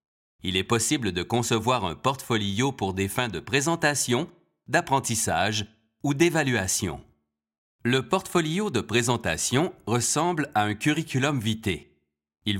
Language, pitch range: French, 95-140 Hz